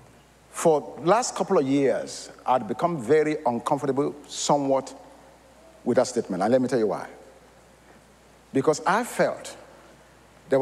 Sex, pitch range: male, 135-180 Hz